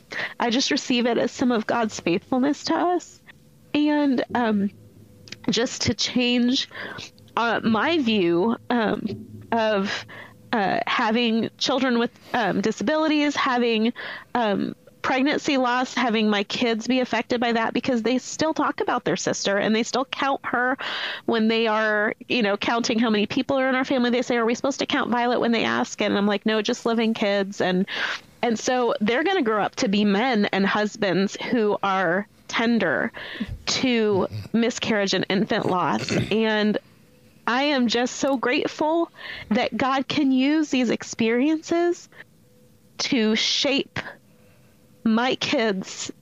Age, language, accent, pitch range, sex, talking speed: 30-49, English, American, 215-265 Hz, female, 155 wpm